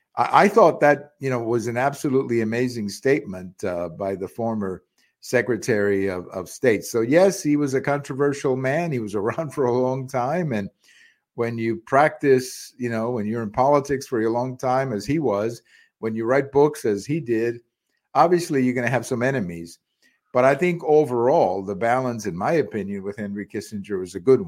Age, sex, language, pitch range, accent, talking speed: 50-69, male, English, 100-135 Hz, American, 190 wpm